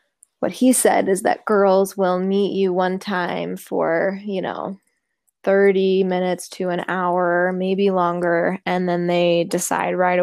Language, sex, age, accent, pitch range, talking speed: English, female, 10-29, American, 180-215 Hz, 155 wpm